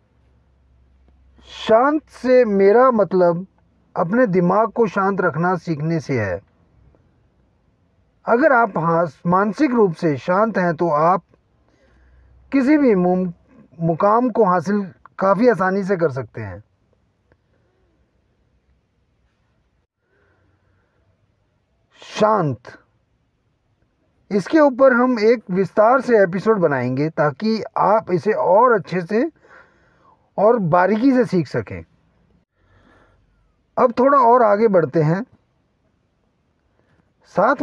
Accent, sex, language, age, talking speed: native, male, Hindi, 40-59, 95 wpm